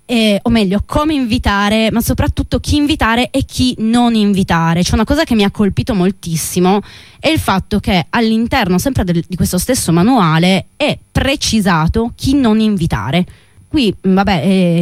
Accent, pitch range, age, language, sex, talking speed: native, 170-230 Hz, 20-39, Italian, female, 160 wpm